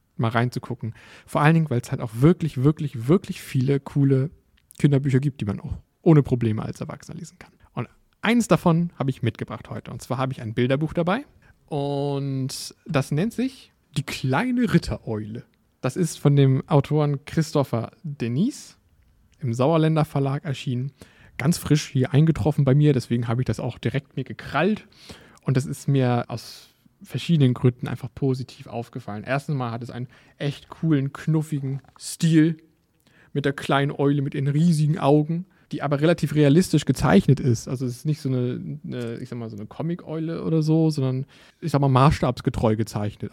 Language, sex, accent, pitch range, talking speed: German, male, German, 125-155 Hz, 175 wpm